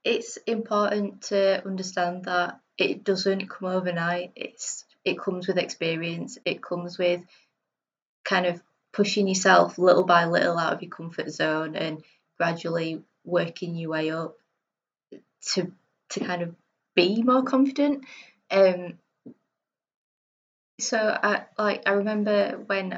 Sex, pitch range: female, 180-225 Hz